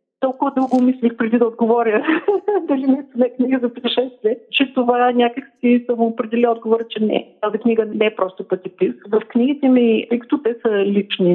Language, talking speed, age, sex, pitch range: Bulgarian, 185 wpm, 50-69, female, 195-240 Hz